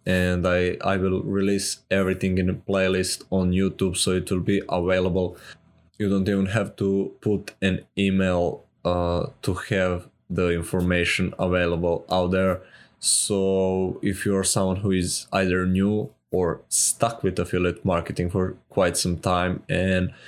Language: English